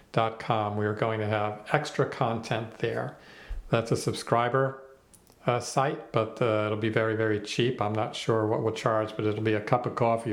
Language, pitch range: English, 110-130 Hz